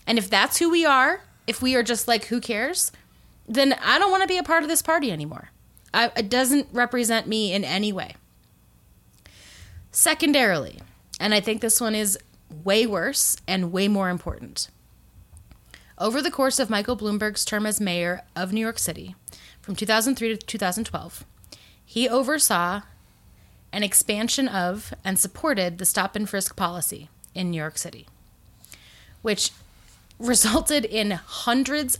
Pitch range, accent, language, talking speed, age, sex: 190-250 Hz, American, English, 155 wpm, 20-39, female